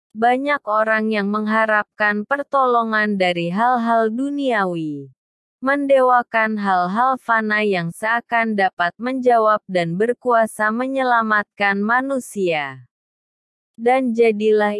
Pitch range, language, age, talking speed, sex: 190-245 Hz, Indonesian, 20-39, 85 wpm, female